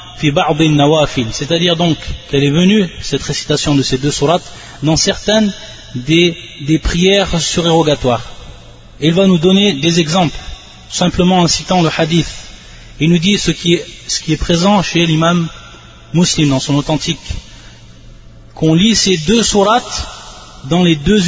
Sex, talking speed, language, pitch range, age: male, 145 wpm, French, 140-180 Hz, 30-49